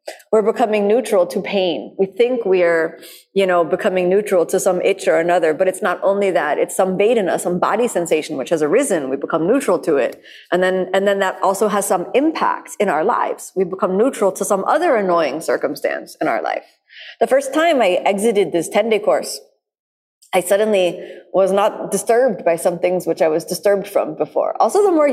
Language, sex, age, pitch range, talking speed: English, female, 30-49, 185-245 Hz, 200 wpm